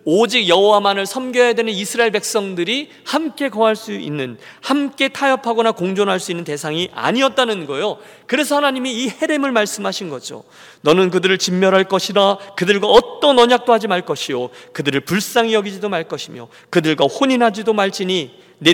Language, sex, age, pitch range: Korean, male, 40-59, 165-235 Hz